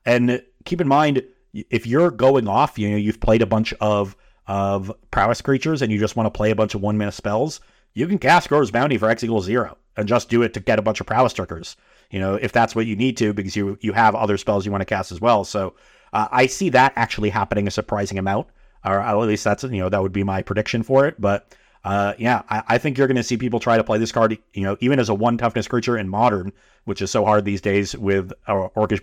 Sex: male